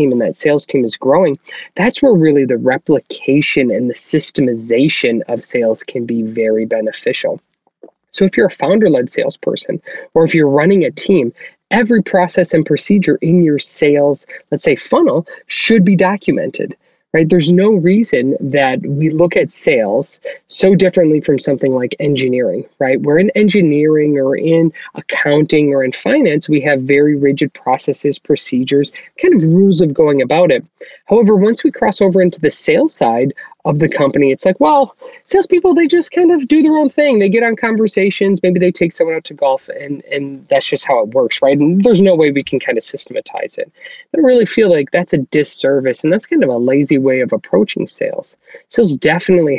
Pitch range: 135-210 Hz